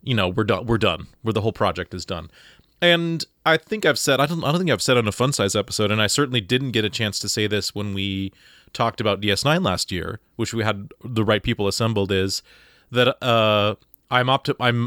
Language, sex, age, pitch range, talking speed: English, male, 30-49, 100-130 Hz, 240 wpm